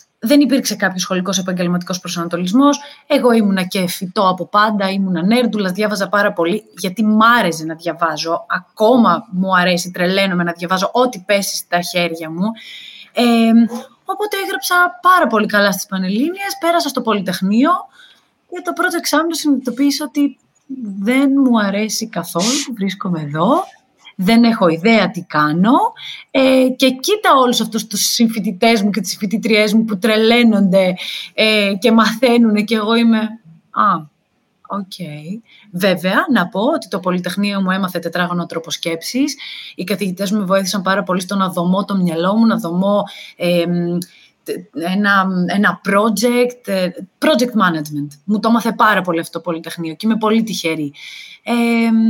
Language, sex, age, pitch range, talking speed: Greek, female, 30-49, 180-235 Hz, 150 wpm